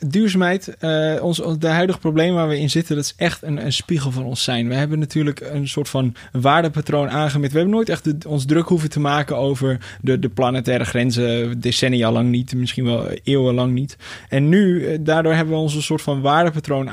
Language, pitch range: Dutch, 125-155 Hz